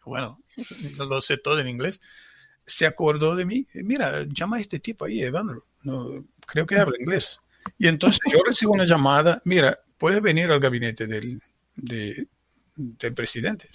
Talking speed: 155 wpm